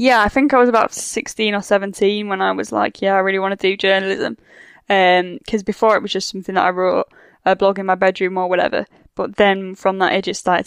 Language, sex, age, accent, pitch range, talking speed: English, female, 10-29, British, 185-200 Hz, 245 wpm